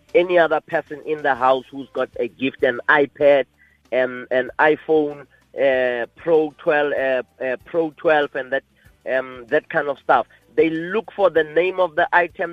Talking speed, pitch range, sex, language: 180 wpm, 135-170 Hz, male, English